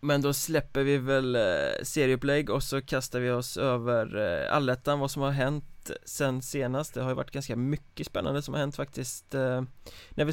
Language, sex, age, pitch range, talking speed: Swedish, male, 20-39, 125-145 Hz, 190 wpm